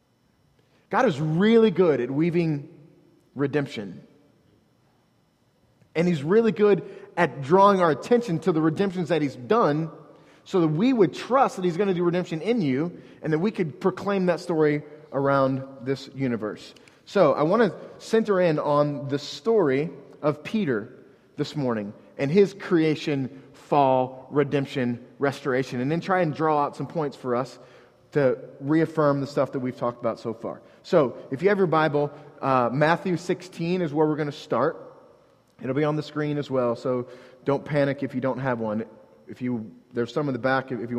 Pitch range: 135-170 Hz